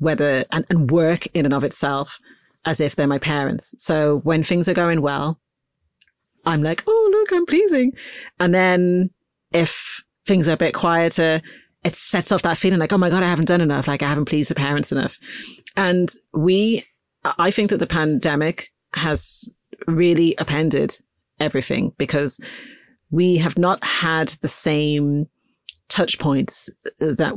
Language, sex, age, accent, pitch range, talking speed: English, female, 40-59, British, 145-180 Hz, 160 wpm